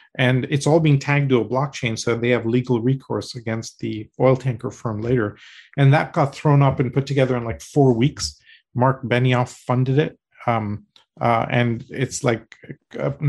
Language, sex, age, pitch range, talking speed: English, male, 40-59, 120-140 Hz, 185 wpm